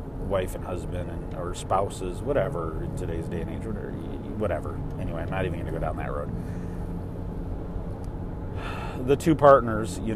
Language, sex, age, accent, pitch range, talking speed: English, male, 30-49, American, 90-105 Hz, 160 wpm